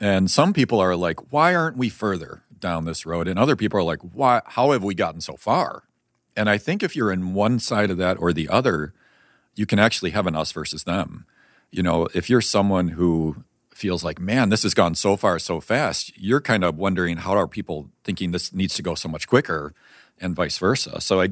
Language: English